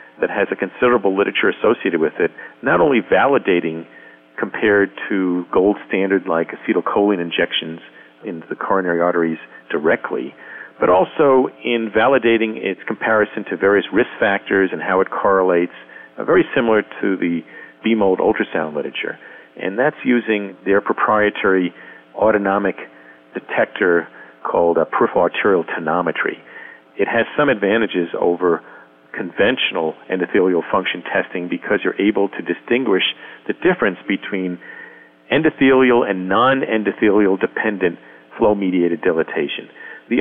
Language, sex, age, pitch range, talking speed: English, male, 50-69, 90-115 Hz, 115 wpm